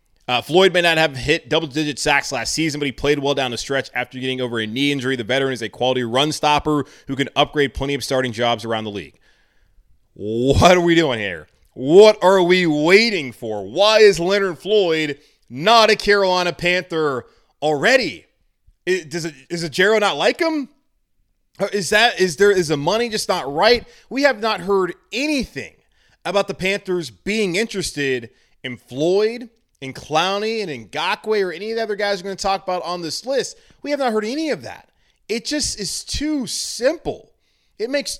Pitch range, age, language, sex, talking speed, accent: 155-235 Hz, 30-49, English, male, 190 wpm, American